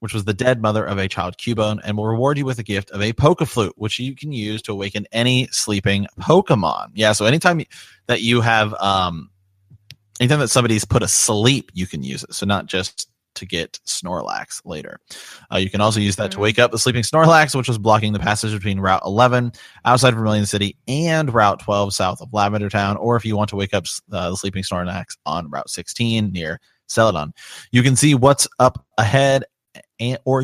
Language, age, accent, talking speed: English, 30-49, American, 205 wpm